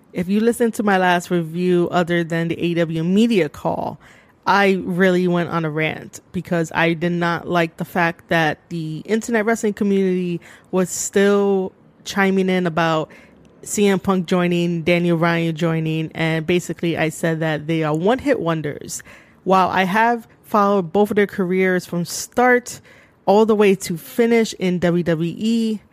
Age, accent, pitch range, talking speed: 20-39, American, 170-215 Hz, 155 wpm